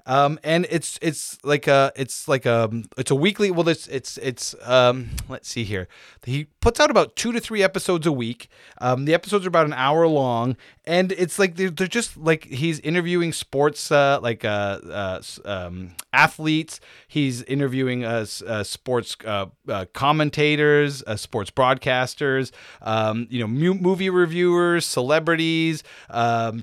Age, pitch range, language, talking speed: 30-49, 120-160 Hz, English, 165 wpm